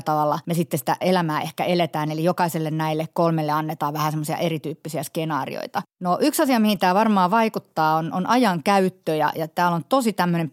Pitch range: 160-185 Hz